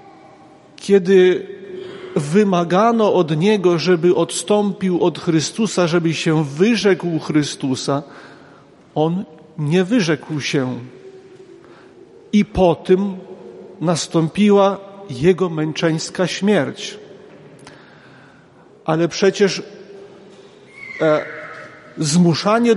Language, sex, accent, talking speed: Polish, male, native, 70 wpm